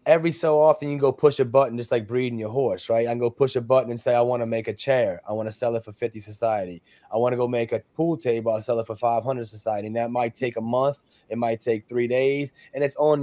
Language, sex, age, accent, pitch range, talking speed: English, male, 20-39, American, 115-140 Hz, 295 wpm